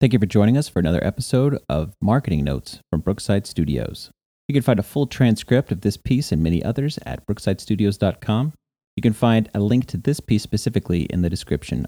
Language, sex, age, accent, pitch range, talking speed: English, male, 40-59, American, 85-125 Hz, 200 wpm